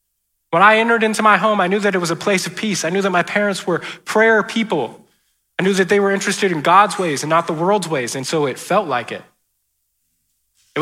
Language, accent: English, American